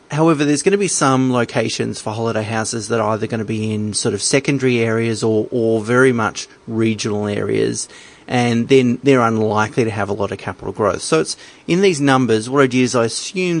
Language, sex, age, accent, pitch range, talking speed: English, male, 30-49, Australian, 110-135 Hz, 215 wpm